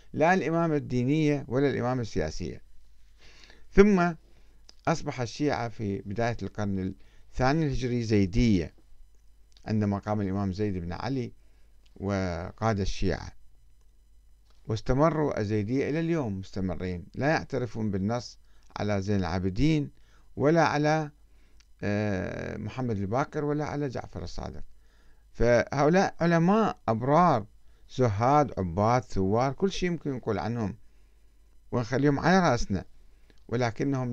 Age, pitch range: 50-69, 100-145 Hz